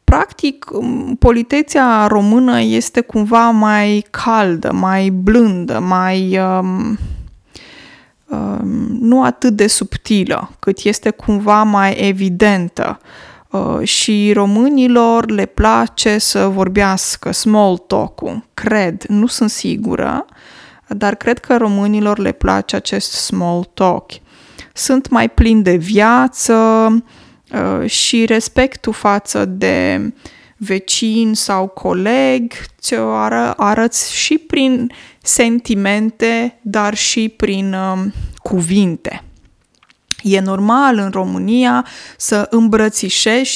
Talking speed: 100 wpm